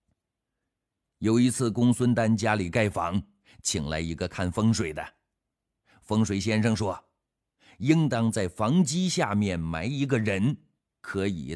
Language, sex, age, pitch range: Chinese, male, 50-69, 100-130 Hz